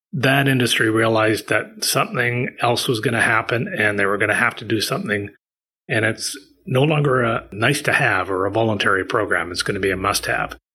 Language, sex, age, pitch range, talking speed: English, male, 30-49, 110-135 Hz, 205 wpm